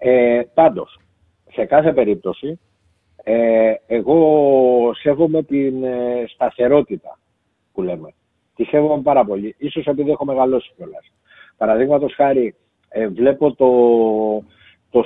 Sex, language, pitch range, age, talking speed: male, Greek, 110-150 Hz, 60-79, 95 wpm